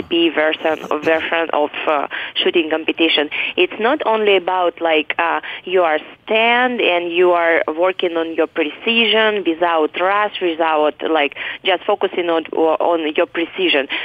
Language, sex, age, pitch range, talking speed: English, female, 20-39, 165-240 Hz, 130 wpm